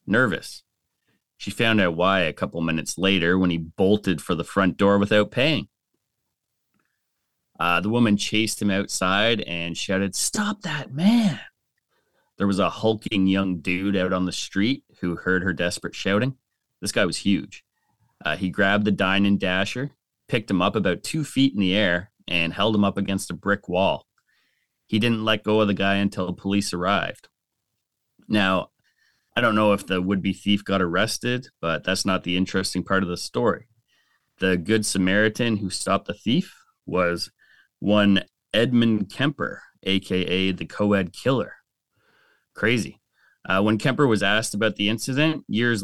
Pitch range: 95-110 Hz